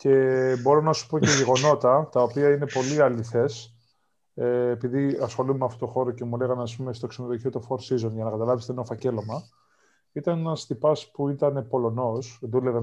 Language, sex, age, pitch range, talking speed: Greek, male, 20-39, 120-145 Hz, 190 wpm